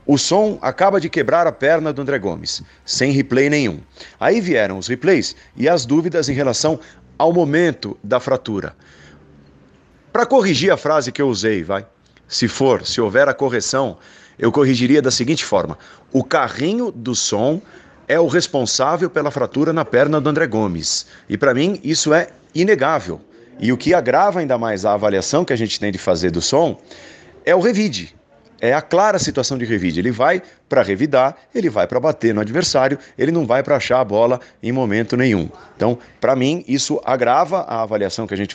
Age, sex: 40-59, male